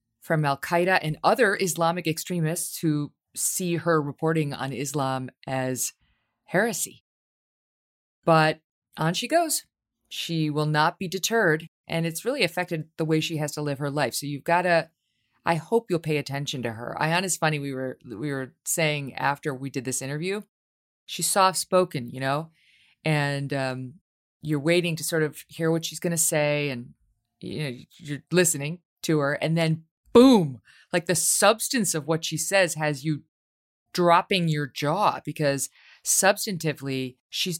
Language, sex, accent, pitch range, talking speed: English, female, American, 135-170 Hz, 160 wpm